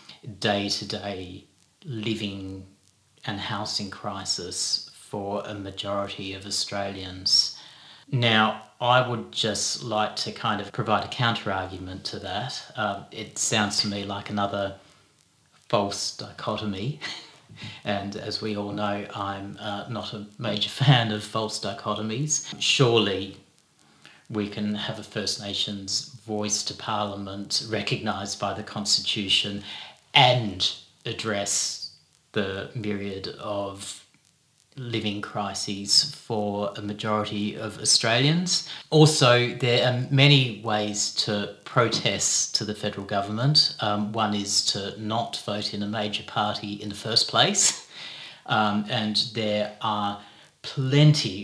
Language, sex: English, male